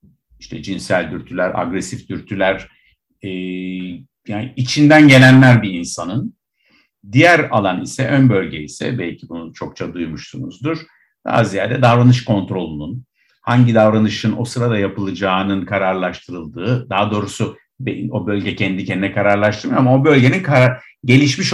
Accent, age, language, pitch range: native, 50-69, Turkish, 95-130 Hz